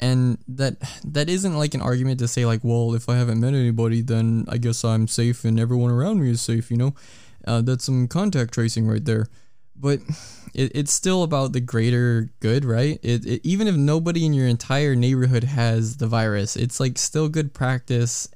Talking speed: 205 wpm